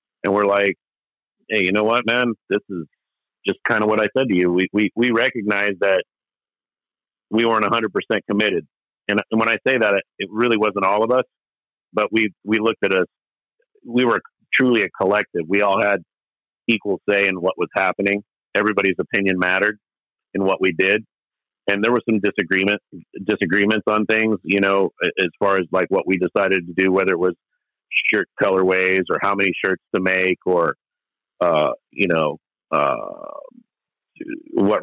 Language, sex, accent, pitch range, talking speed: English, male, American, 95-115 Hz, 180 wpm